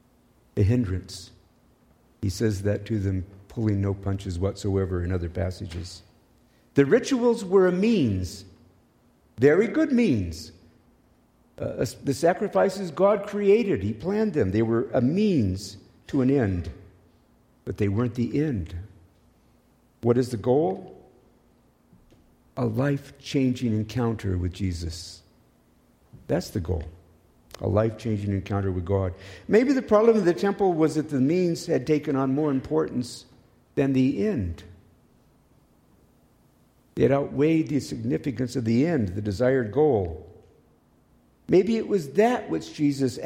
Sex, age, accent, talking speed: male, 50-69, American, 130 wpm